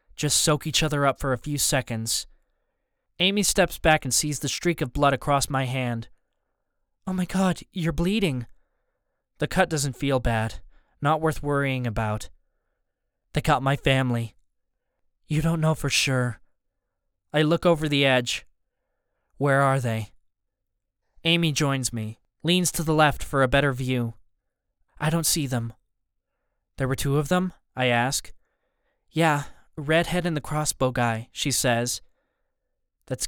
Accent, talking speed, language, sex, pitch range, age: American, 150 wpm, English, male, 125-155 Hz, 20-39